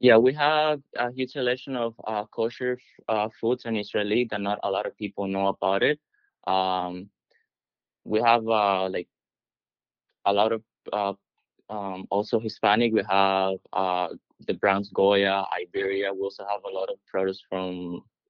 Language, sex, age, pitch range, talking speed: English, male, 20-39, 95-105 Hz, 155 wpm